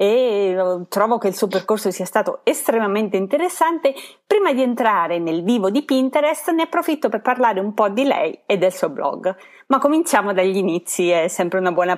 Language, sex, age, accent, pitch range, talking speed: Italian, female, 30-49, native, 195-290 Hz, 185 wpm